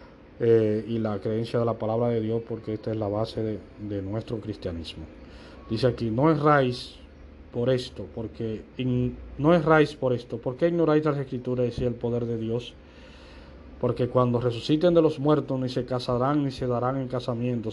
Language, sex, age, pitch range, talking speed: Spanish, male, 40-59, 115-145 Hz, 180 wpm